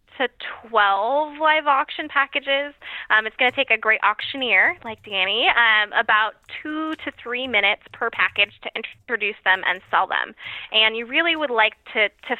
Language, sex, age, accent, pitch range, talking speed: English, female, 10-29, American, 205-255 Hz, 175 wpm